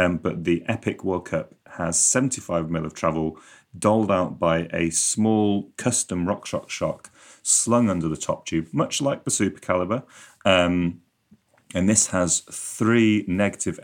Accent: British